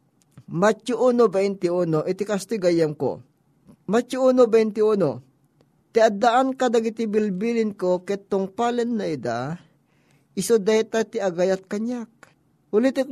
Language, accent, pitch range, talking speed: Filipino, native, 170-230 Hz, 95 wpm